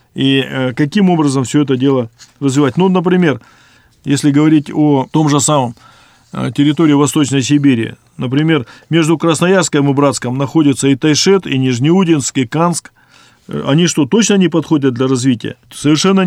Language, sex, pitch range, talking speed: Russian, male, 135-170 Hz, 140 wpm